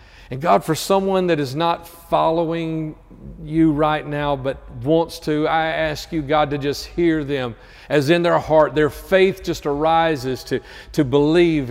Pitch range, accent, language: 140-180 Hz, American, English